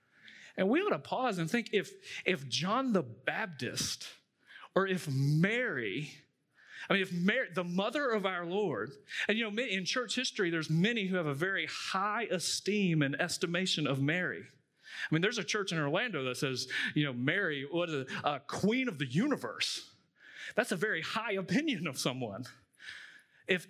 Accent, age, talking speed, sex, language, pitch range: American, 40-59, 175 wpm, male, English, 125-180 Hz